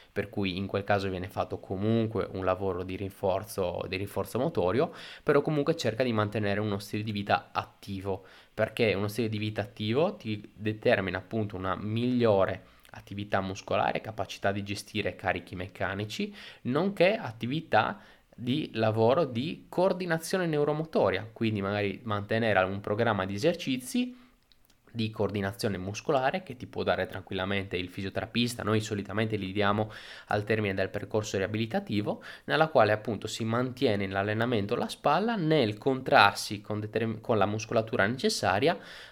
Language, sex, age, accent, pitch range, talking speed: Italian, male, 20-39, native, 100-120 Hz, 140 wpm